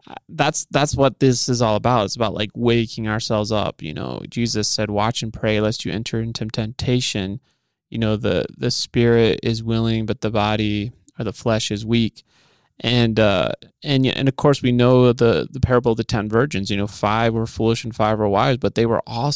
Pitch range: 110-130 Hz